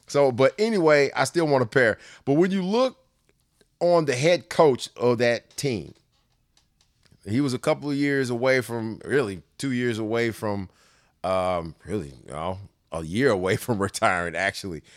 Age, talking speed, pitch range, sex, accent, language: 30-49, 170 wpm, 110-150 Hz, male, American, English